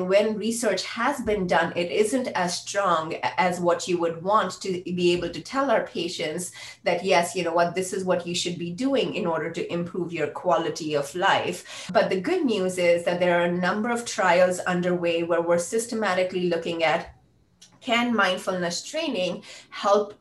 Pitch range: 175-215 Hz